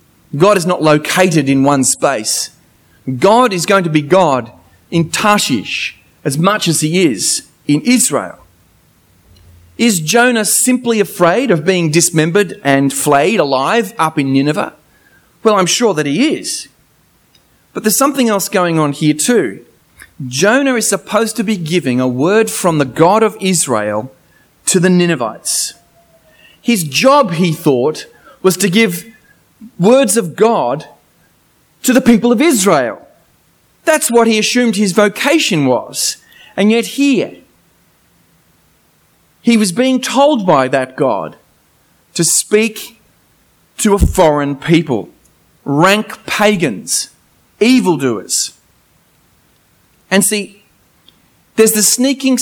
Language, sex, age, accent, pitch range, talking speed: English, male, 30-49, Australian, 155-225 Hz, 125 wpm